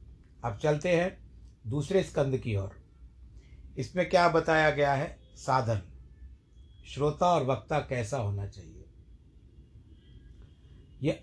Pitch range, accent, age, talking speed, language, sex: 110-150 Hz, native, 60-79, 105 wpm, Hindi, male